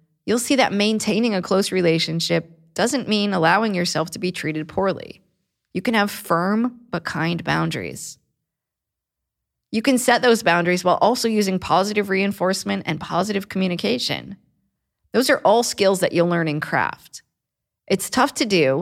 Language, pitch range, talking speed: English, 160-205 Hz, 155 wpm